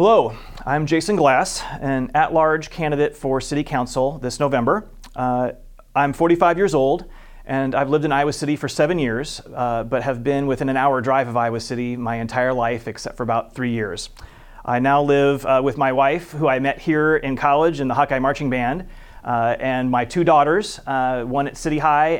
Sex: male